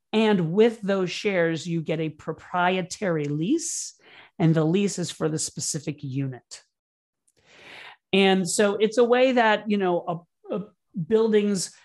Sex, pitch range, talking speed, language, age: male, 155-200 Hz, 140 wpm, English, 40-59